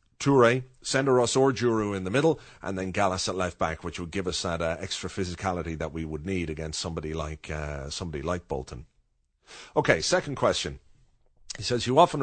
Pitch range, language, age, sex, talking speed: 85-110 Hz, English, 30-49, male, 175 wpm